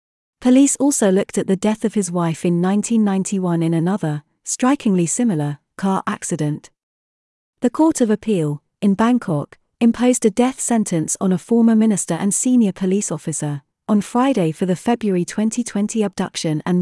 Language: English